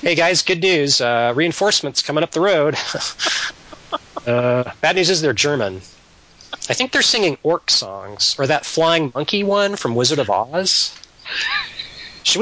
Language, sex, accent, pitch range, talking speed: English, male, American, 125-190 Hz, 155 wpm